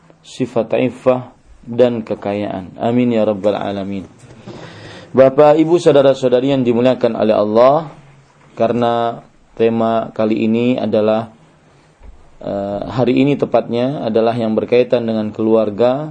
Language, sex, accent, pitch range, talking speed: English, male, Indonesian, 115-135 Hz, 110 wpm